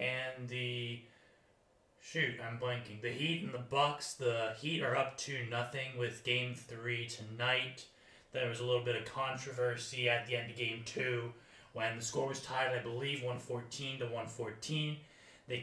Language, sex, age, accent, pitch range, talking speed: English, male, 30-49, American, 120-135 Hz, 175 wpm